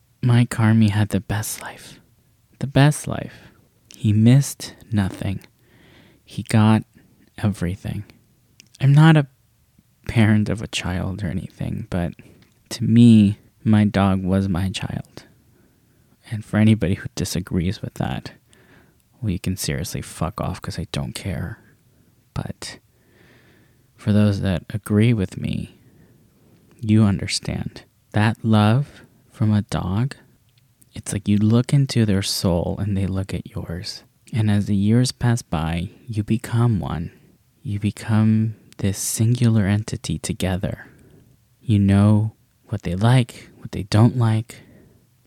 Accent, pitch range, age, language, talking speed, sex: American, 100-120 Hz, 20-39, English, 130 wpm, male